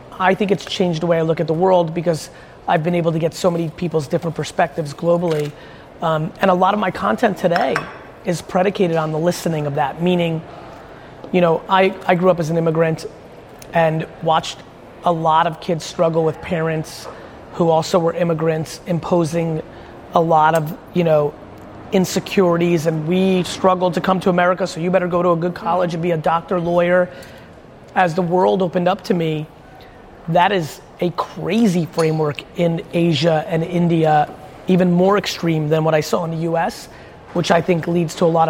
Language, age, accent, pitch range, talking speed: English, 30-49, American, 160-185 Hz, 190 wpm